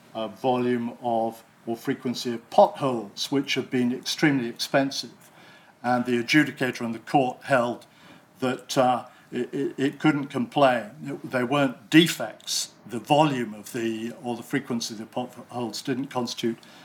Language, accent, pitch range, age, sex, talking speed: English, British, 120-135 Hz, 50-69, male, 145 wpm